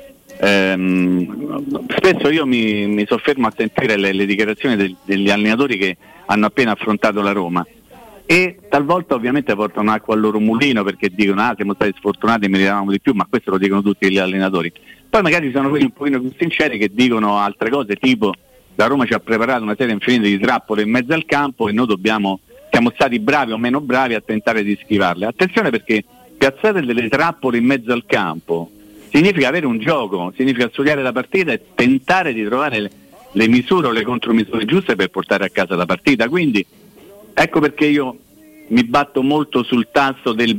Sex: male